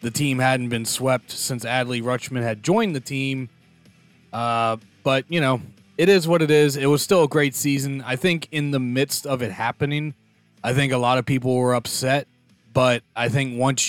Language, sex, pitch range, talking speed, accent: English, male, 125-155 Hz, 205 wpm, American